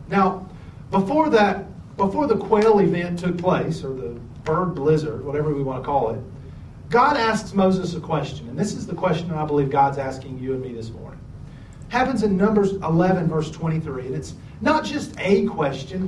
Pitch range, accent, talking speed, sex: 135-205 Hz, American, 185 wpm, male